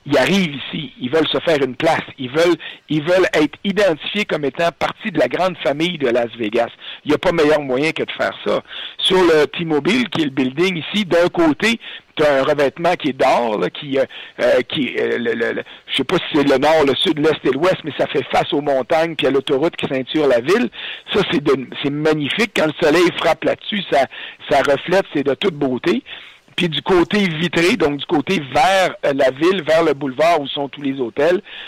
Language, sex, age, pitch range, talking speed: French, male, 50-69, 145-190 Hz, 225 wpm